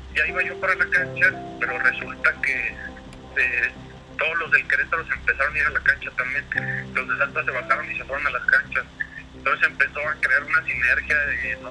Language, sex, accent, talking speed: Spanish, male, Mexican, 210 wpm